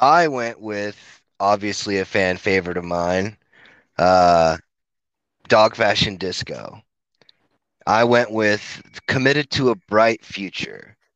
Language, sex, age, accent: English, male, 30-49, American